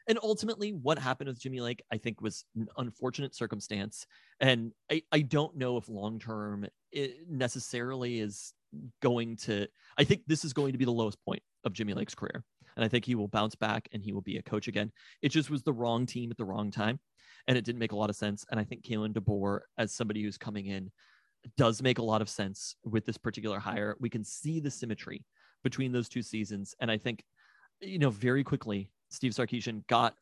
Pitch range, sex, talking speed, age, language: 110-130 Hz, male, 220 wpm, 30-49, English